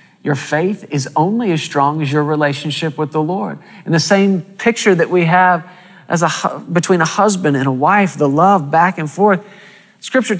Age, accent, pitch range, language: 40-59, American, 155-220 Hz, English